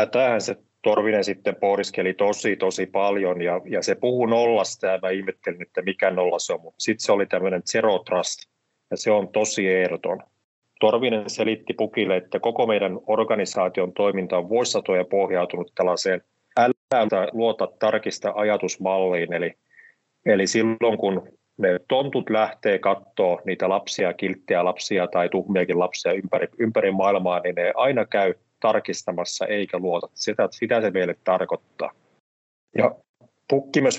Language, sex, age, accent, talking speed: Finnish, male, 30-49, native, 145 wpm